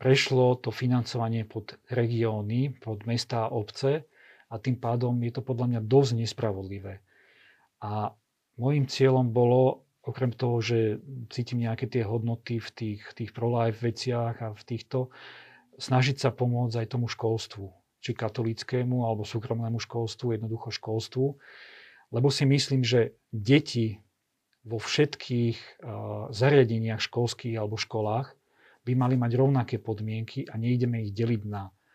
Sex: male